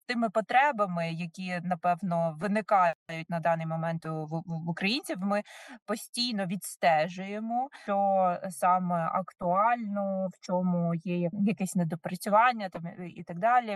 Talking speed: 110 wpm